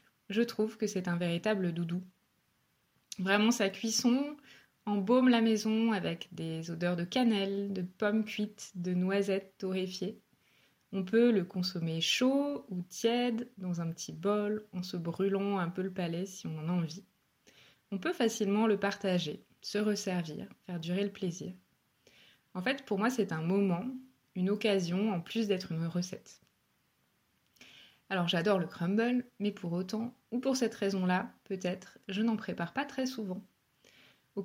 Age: 20-39